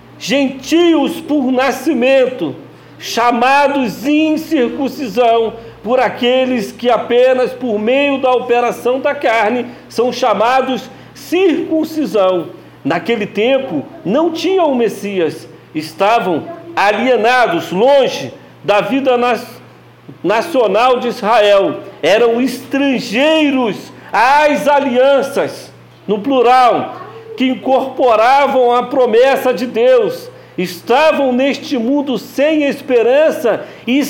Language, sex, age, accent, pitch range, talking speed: Portuguese, male, 50-69, Brazilian, 235-290 Hz, 90 wpm